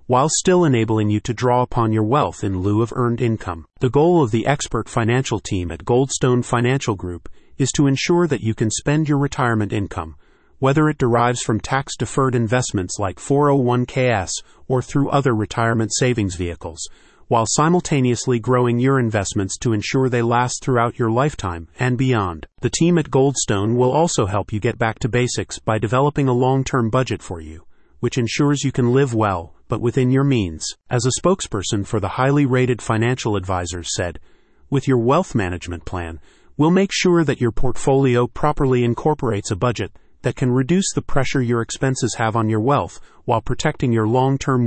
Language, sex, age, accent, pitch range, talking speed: English, male, 40-59, American, 110-135 Hz, 175 wpm